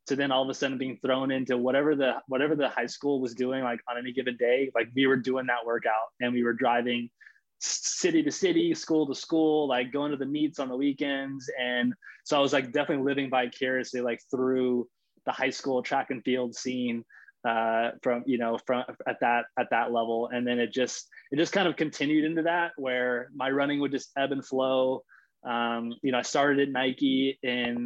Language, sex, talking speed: English, male, 215 wpm